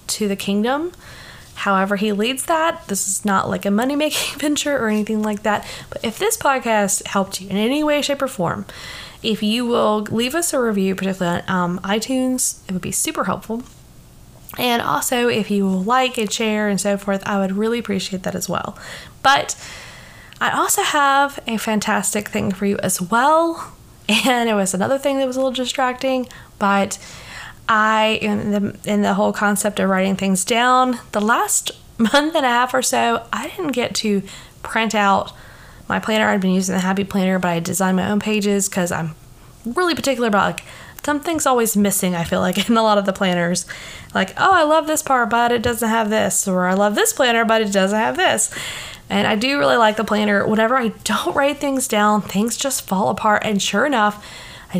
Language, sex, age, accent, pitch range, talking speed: English, female, 10-29, American, 200-255 Hz, 200 wpm